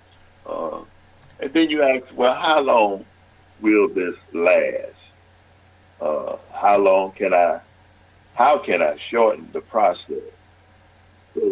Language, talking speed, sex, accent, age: English, 120 wpm, male, American, 60-79